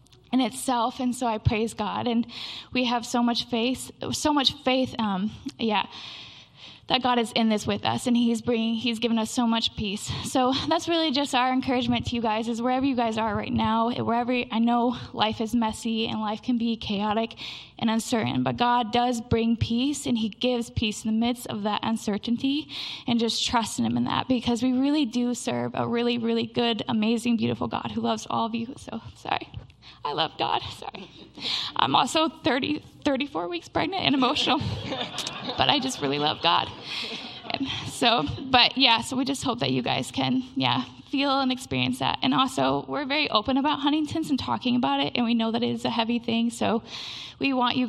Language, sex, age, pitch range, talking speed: English, female, 10-29, 215-255 Hz, 200 wpm